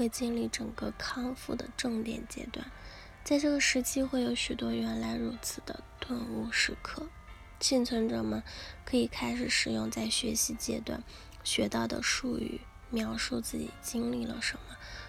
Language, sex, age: Chinese, female, 10-29